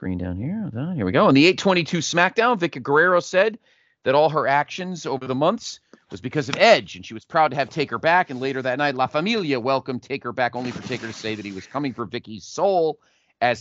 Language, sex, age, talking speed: English, male, 40-59, 240 wpm